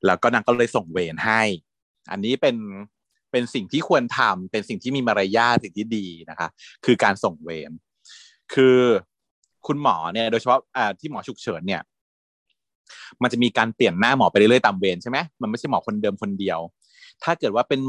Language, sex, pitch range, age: Thai, male, 95-125 Hz, 30-49